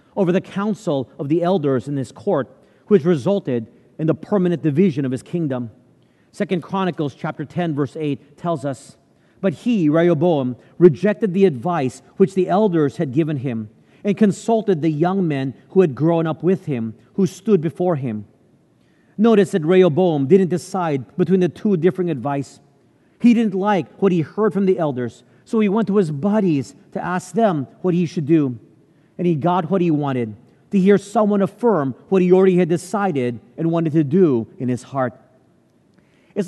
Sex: male